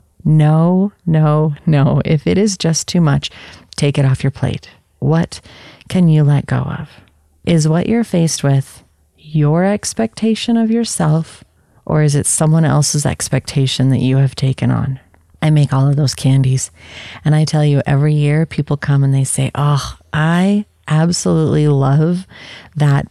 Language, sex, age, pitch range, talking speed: English, female, 30-49, 140-175 Hz, 160 wpm